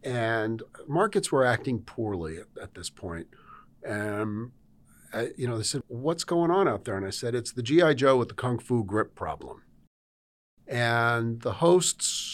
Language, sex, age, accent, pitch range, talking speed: English, male, 50-69, American, 110-135 Hz, 175 wpm